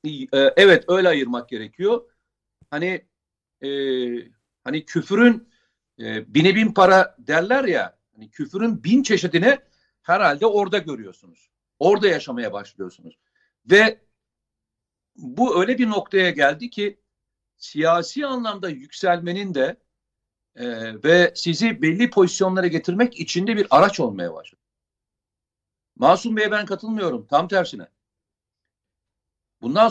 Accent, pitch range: native, 160-230 Hz